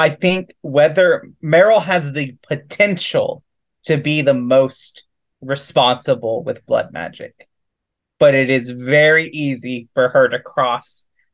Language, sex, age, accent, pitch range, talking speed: English, male, 20-39, American, 125-160 Hz, 125 wpm